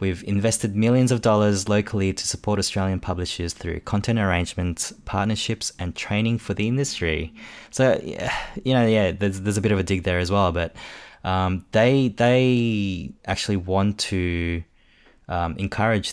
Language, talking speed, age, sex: English, 160 wpm, 20-39, male